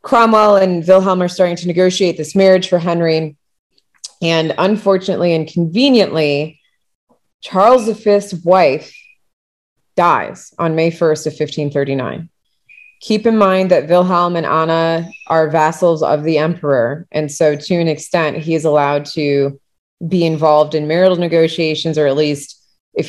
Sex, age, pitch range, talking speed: female, 20-39, 155-185 Hz, 140 wpm